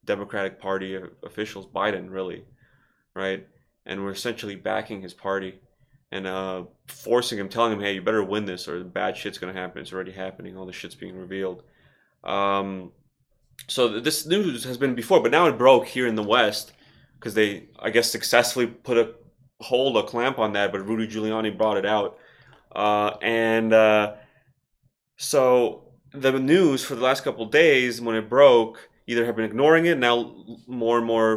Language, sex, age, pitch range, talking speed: English, male, 20-39, 100-120 Hz, 175 wpm